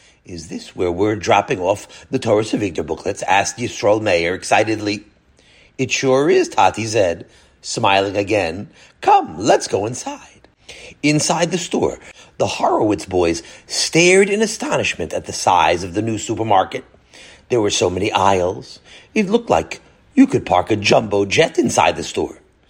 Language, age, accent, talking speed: English, 40-59, American, 155 wpm